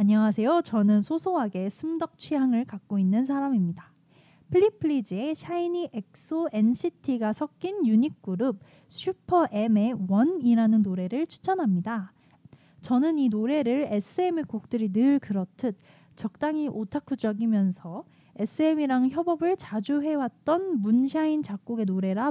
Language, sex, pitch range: Korean, female, 205-305 Hz